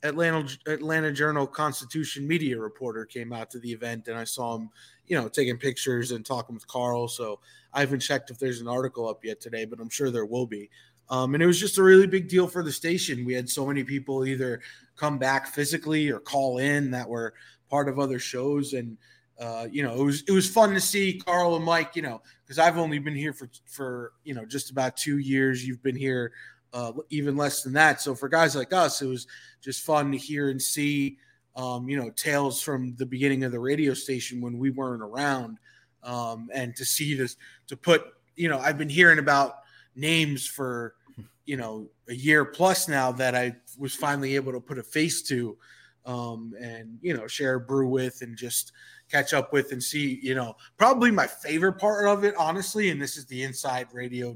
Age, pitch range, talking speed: 20-39, 125-150 Hz, 215 wpm